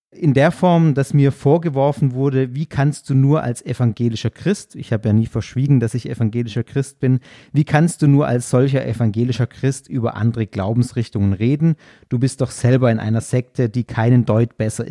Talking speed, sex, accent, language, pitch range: 190 wpm, male, German, German, 120-150 Hz